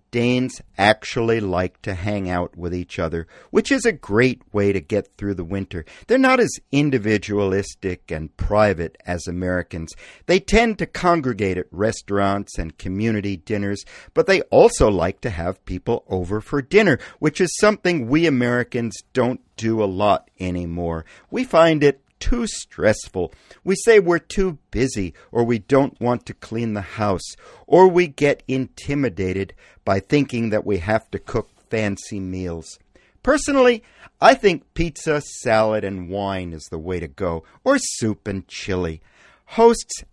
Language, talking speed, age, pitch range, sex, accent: English, 155 wpm, 50-69, 95-140 Hz, male, American